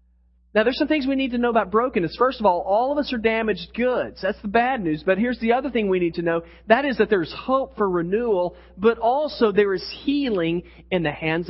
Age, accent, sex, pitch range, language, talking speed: 40-59, American, male, 170-240 Hz, English, 245 wpm